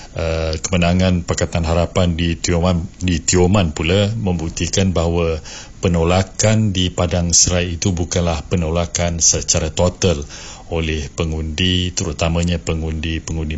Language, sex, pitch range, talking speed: Malay, male, 85-95 Hz, 100 wpm